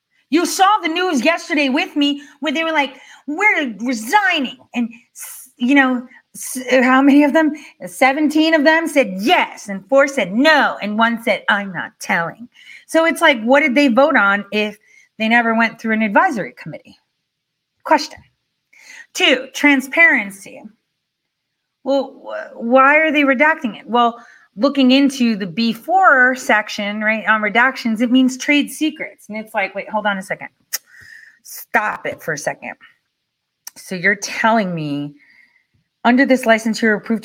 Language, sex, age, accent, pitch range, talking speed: English, female, 30-49, American, 215-295 Hz, 155 wpm